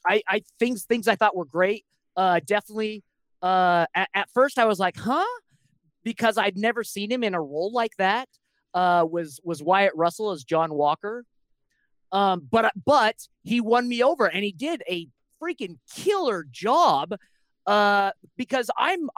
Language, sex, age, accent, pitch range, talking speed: English, male, 30-49, American, 170-230 Hz, 165 wpm